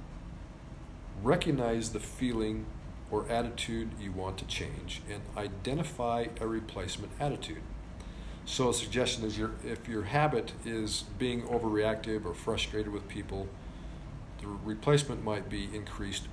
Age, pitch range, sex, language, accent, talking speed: 40-59, 95-115 Hz, male, English, American, 125 wpm